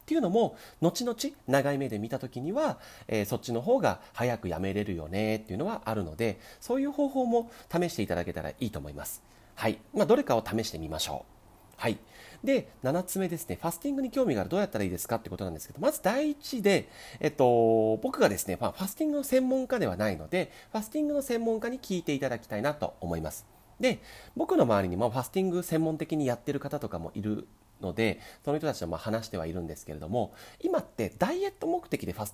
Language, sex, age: Japanese, male, 40-59